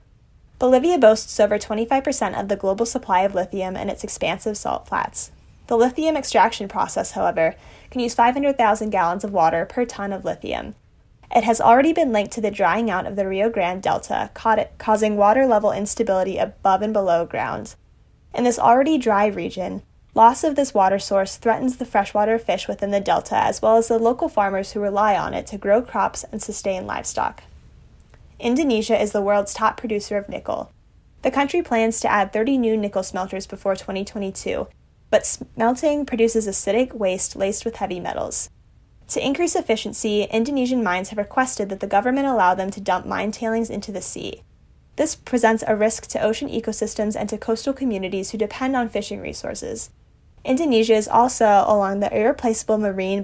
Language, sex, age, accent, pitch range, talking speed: English, female, 10-29, American, 200-235 Hz, 175 wpm